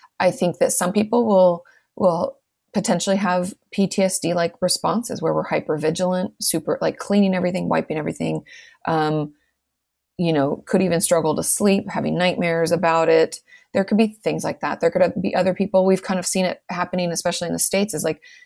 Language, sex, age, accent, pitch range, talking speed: English, female, 30-49, American, 160-190 Hz, 180 wpm